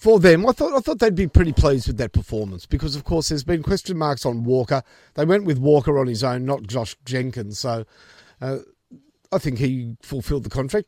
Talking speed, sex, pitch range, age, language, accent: 220 wpm, male, 125-165 Hz, 50-69, English, Australian